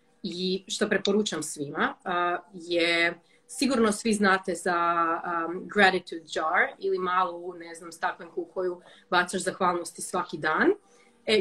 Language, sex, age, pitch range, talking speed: Croatian, female, 30-49, 180-225 Hz, 135 wpm